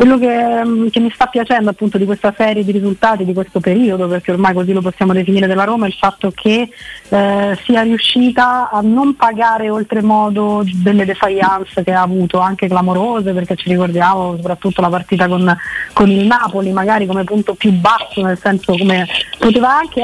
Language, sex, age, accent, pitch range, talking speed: Italian, female, 30-49, native, 185-220 Hz, 185 wpm